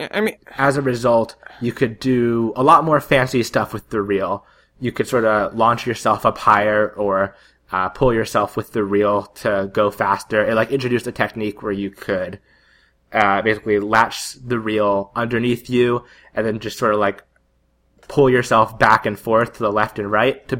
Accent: American